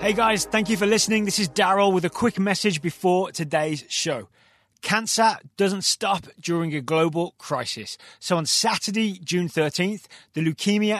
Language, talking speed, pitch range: English, 165 wpm, 160-195 Hz